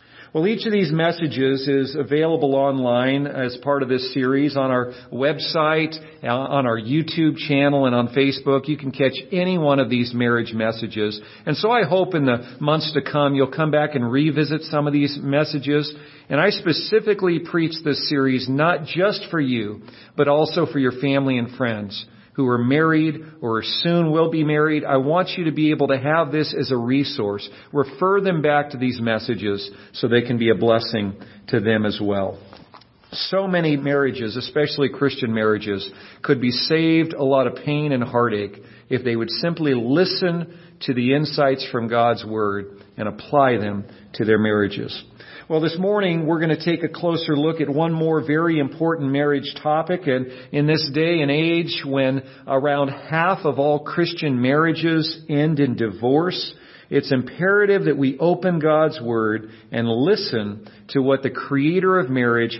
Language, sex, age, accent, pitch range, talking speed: English, male, 50-69, American, 120-155 Hz, 175 wpm